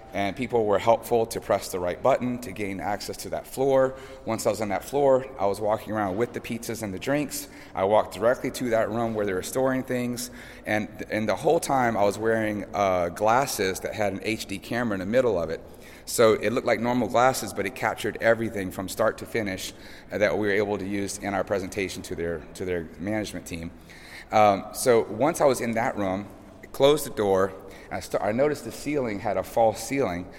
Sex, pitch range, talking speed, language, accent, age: male, 100-125 Hz, 225 wpm, English, American, 30-49